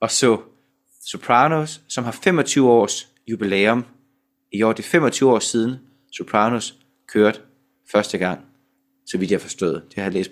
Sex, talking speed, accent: male, 155 wpm, native